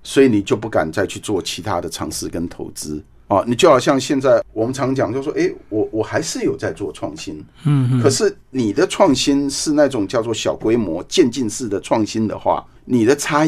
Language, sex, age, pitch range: Chinese, male, 50-69, 105-170 Hz